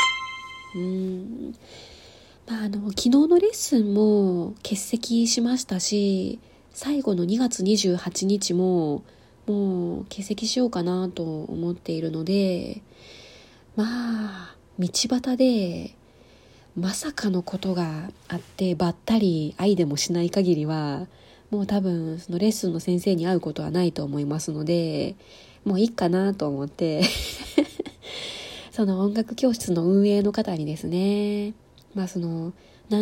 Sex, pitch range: female, 175-215 Hz